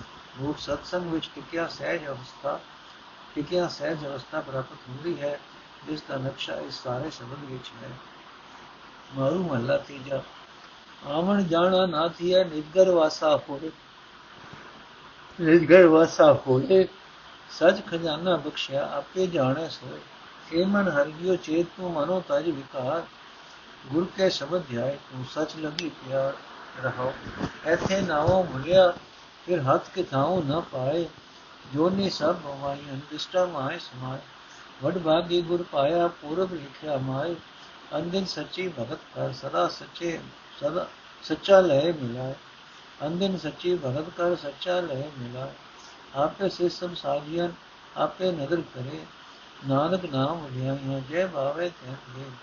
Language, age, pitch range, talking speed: Punjabi, 60-79, 135-180 Hz, 65 wpm